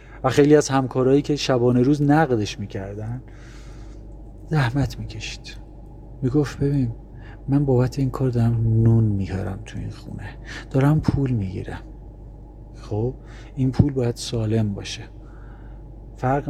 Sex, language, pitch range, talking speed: male, Persian, 115-150 Hz, 115 wpm